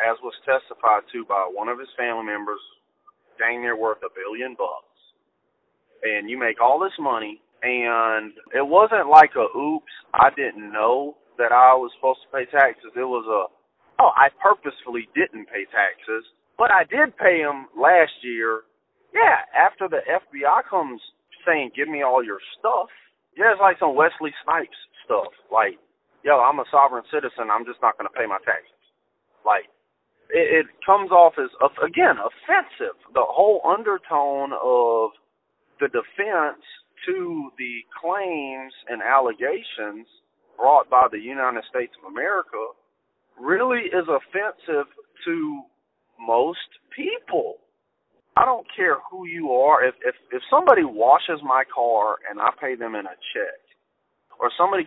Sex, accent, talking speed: male, American, 150 wpm